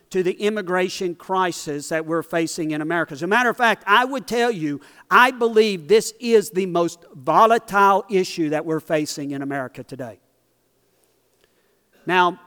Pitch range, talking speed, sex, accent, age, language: 165-205 Hz, 160 wpm, male, American, 50-69, English